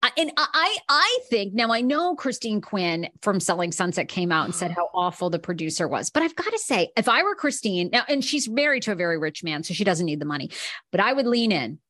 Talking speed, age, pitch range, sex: 250 wpm, 40-59, 185-265 Hz, female